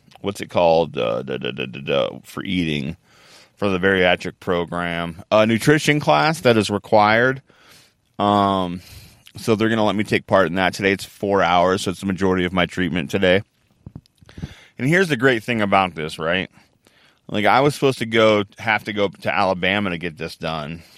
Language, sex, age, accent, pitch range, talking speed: English, male, 20-39, American, 85-105 Hz, 190 wpm